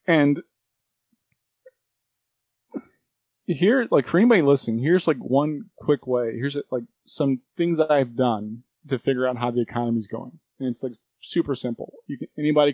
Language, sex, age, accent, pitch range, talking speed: English, male, 20-39, American, 115-145 Hz, 160 wpm